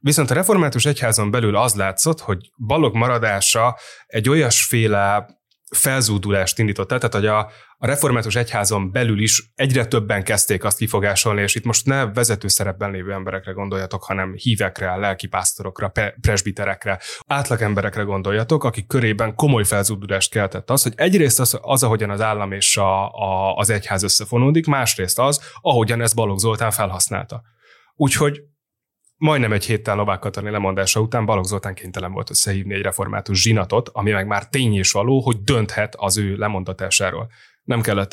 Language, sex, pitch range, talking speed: Hungarian, male, 100-120 Hz, 150 wpm